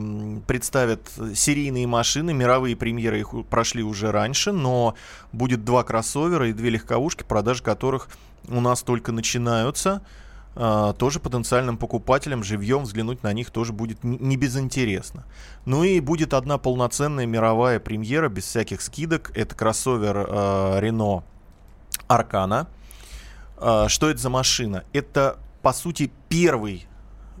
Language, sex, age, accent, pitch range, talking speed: Russian, male, 20-39, native, 110-135 Hz, 120 wpm